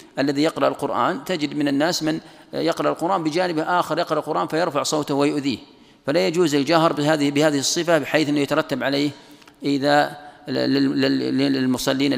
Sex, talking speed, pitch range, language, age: male, 135 wpm, 130-150 Hz, Arabic, 40-59